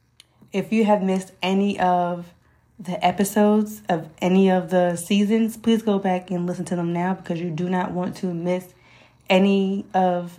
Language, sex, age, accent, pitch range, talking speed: English, female, 20-39, American, 170-195 Hz, 175 wpm